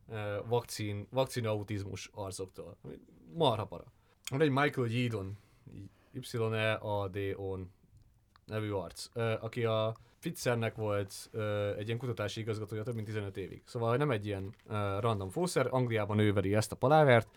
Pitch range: 100-120 Hz